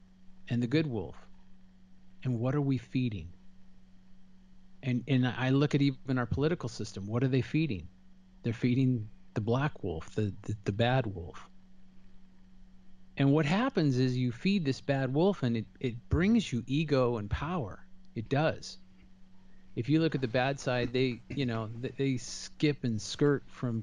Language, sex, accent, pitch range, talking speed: English, male, American, 95-130 Hz, 165 wpm